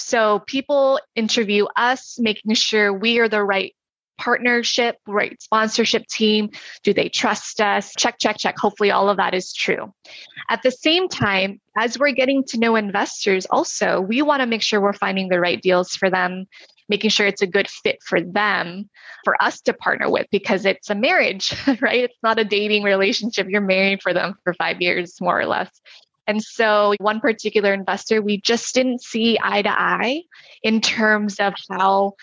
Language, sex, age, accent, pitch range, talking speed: English, female, 20-39, American, 195-230 Hz, 185 wpm